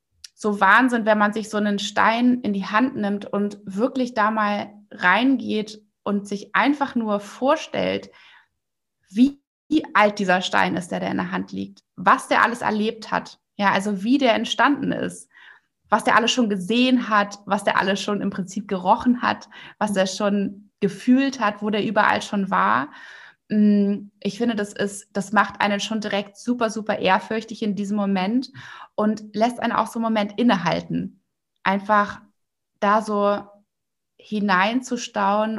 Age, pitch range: 20-39, 200-225 Hz